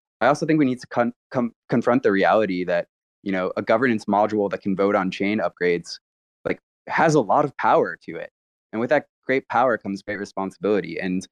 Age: 20-39